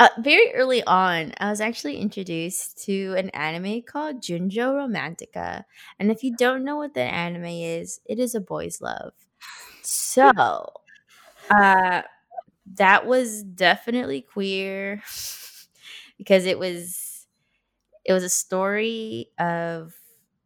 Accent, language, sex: American, English, female